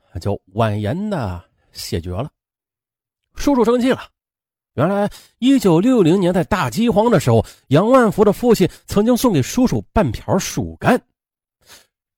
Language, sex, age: Chinese, male, 30-49